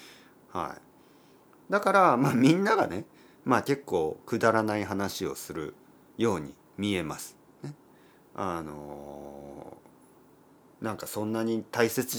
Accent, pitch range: native, 95-150 Hz